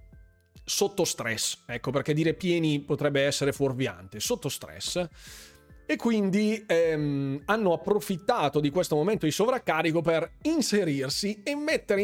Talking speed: 125 wpm